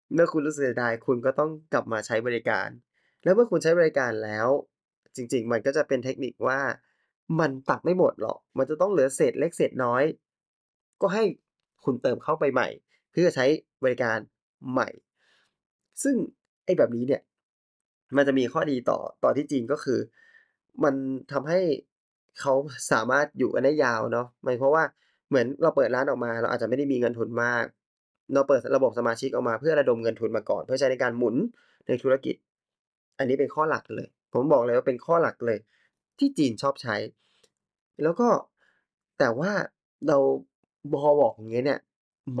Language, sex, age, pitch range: Thai, male, 20-39, 120-170 Hz